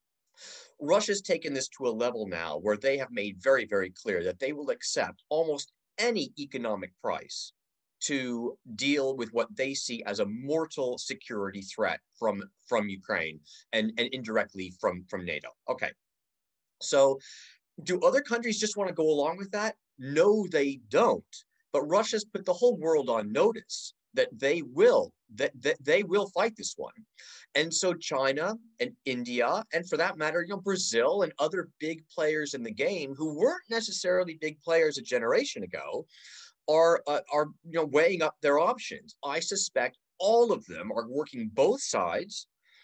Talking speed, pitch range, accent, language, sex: 165 wpm, 130-220 Hz, American, English, male